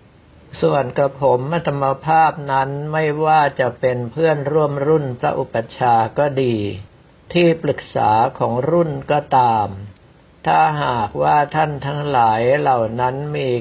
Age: 60-79